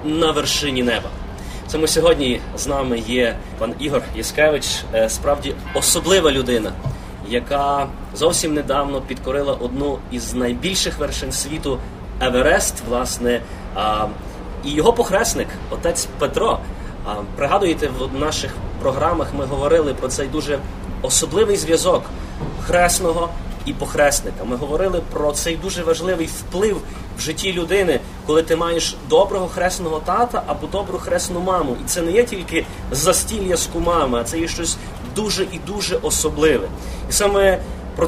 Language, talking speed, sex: Ukrainian, 130 wpm, male